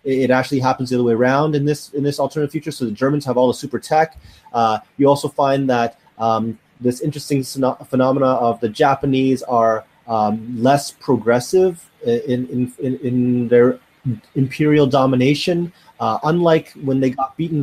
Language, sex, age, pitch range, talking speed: English, male, 30-49, 125-150 Hz, 165 wpm